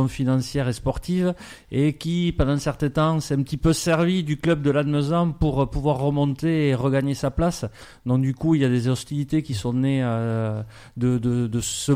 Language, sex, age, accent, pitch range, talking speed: French, male, 30-49, French, 120-145 Hz, 200 wpm